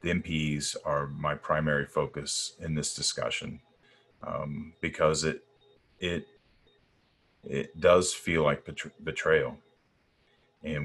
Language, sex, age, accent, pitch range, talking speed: English, male, 30-49, American, 75-90 Hz, 105 wpm